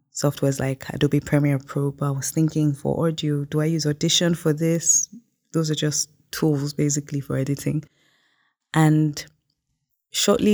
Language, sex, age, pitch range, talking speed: English, female, 20-39, 140-160 Hz, 150 wpm